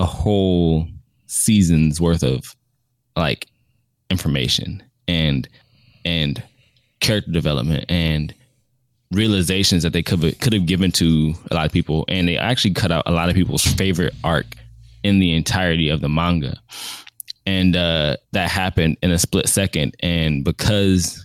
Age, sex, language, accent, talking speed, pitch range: 20-39, male, English, American, 145 wpm, 85-110 Hz